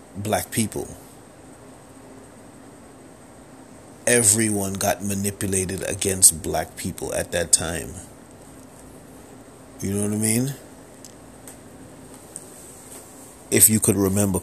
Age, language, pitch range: 30-49, English, 95-120 Hz